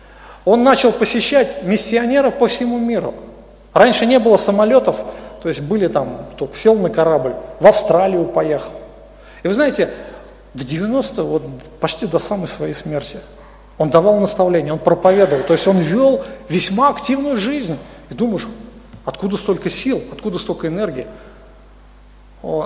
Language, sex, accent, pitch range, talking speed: Russian, male, native, 160-220 Hz, 145 wpm